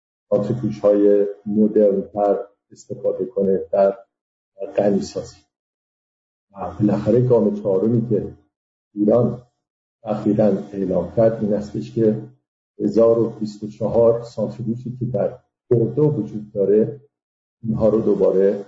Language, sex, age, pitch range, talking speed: English, male, 50-69, 100-125 Hz, 95 wpm